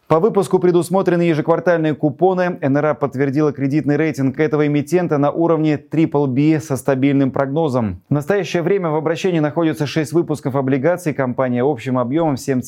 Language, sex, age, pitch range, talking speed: Russian, male, 20-39, 130-155 Hz, 140 wpm